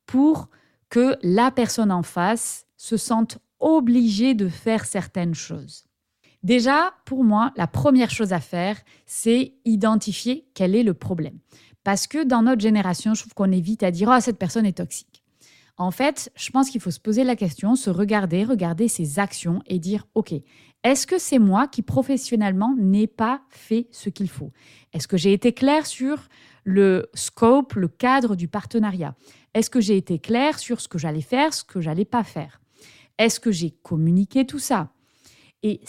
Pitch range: 175-240 Hz